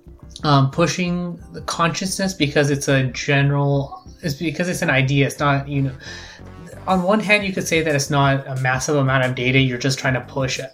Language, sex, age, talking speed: English, male, 20-39, 200 wpm